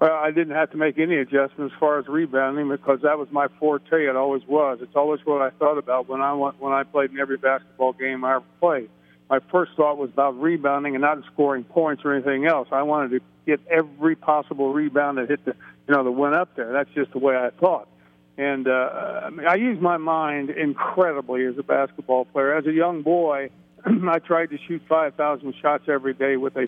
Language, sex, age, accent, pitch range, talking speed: English, male, 50-69, American, 140-155 Hz, 225 wpm